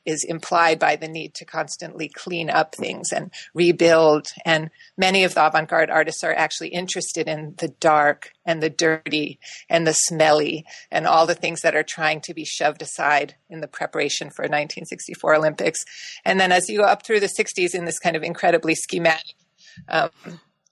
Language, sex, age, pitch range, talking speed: English, female, 30-49, 160-190 Hz, 180 wpm